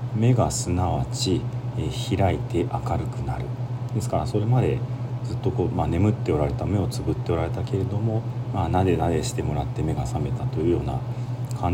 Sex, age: male, 40-59